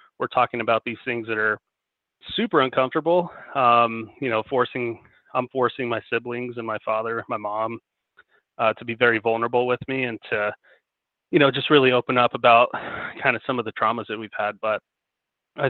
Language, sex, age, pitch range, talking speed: English, male, 30-49, 110-125 Hz, 185 wpm